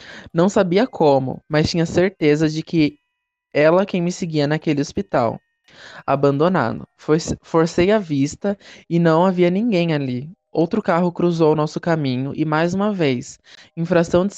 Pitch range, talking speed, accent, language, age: 150-180 Hz, 145 wpm, Brazilian, Portuguese, 20-39